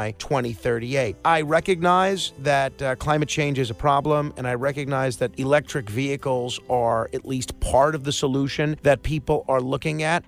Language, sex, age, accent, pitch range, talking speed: English, male, 40-59, American, 135-190 Hz, 165 wpm